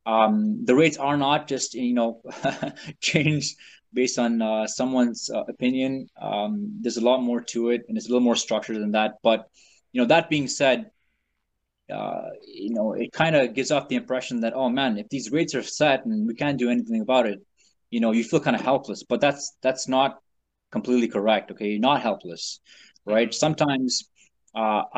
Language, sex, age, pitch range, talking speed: English, male, 20-39, 110-145 Hz, 195 wpm